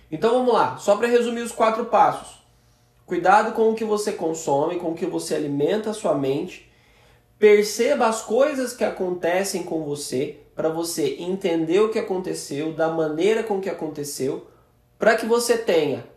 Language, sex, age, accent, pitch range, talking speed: Portuguese, male, 20-39, Brazilian, 160-215 Hz, 165 wpm